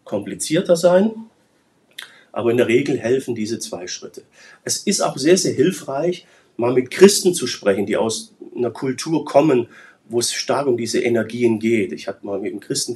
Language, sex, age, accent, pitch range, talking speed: German, male, 40-59, German, 115-160 Hz, 180 wpm